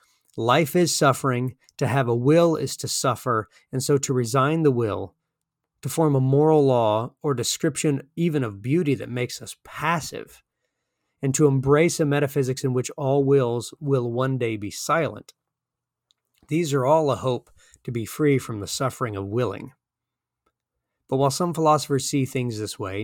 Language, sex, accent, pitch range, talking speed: English, male, American, 120-150 Hz, 170 wpm